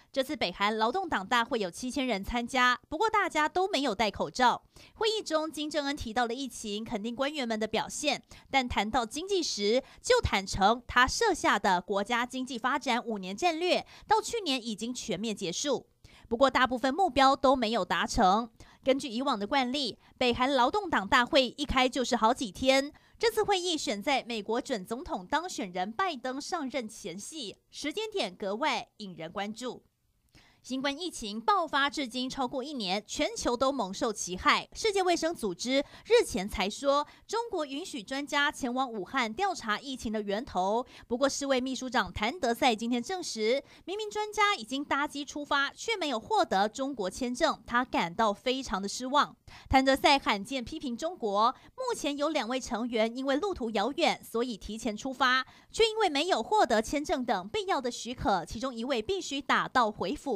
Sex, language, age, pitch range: female, Chinese, 30-49, 230-300 Hz